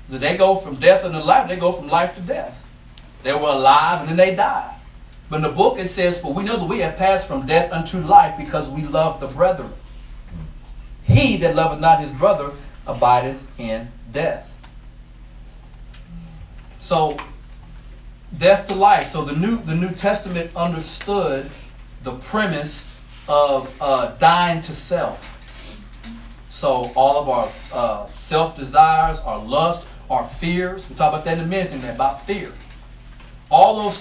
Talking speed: 155 wpm